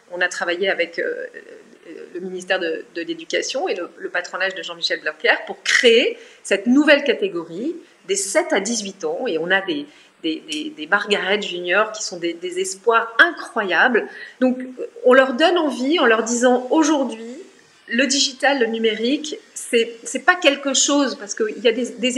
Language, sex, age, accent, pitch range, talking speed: French, female, 30-49, French, 220-325 Hz, 175 wpm